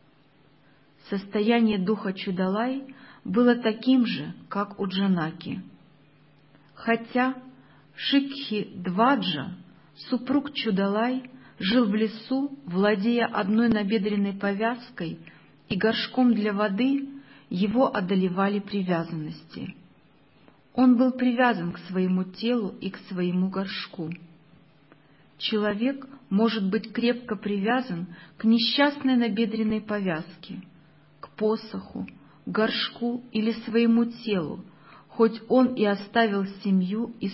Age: 40-59